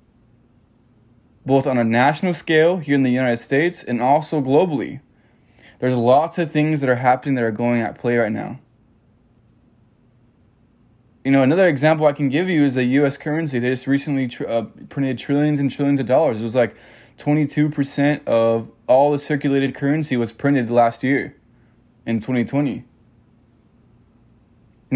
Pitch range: 120-140 Hz